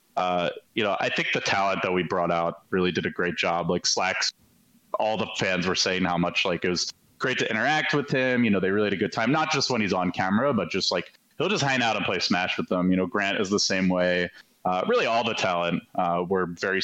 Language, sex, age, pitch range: English, male, 30-49, 95-135 Hz